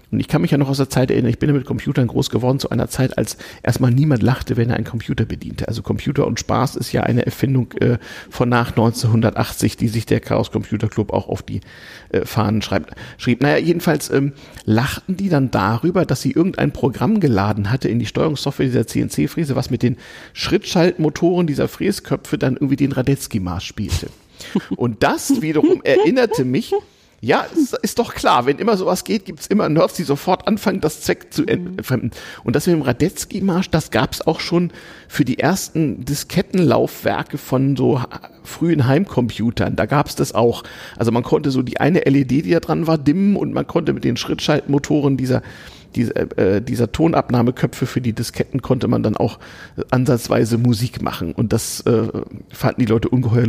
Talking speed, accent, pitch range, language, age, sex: 190 wpm, German, 115-155 Hz, German, 50-69, male